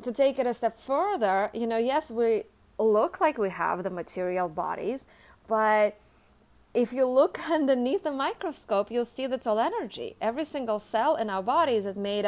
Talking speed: 180 wpm